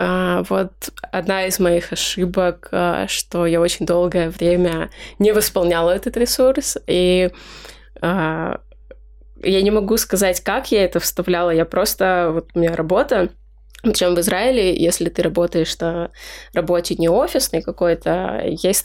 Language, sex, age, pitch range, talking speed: Russian, female, 20-39, 170-190 Hz, 130 wpm